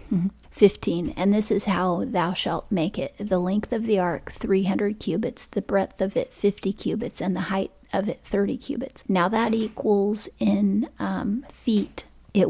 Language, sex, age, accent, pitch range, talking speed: English, female, 30-49, American, 190-225 Hz, 175 wpm